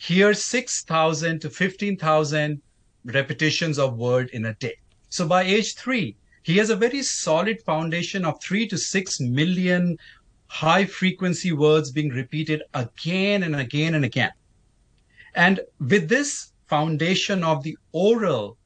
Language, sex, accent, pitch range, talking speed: English, male, Indian, 130-185 Hz, 135 wpm